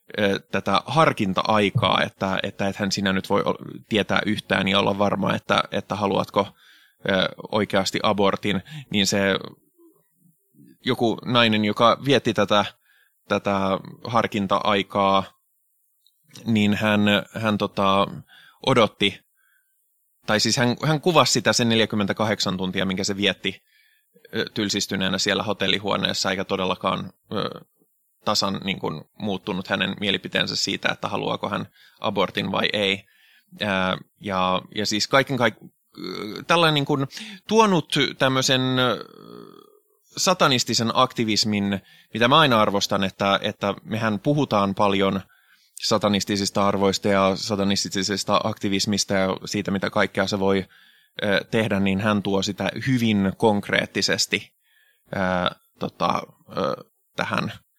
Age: 20-39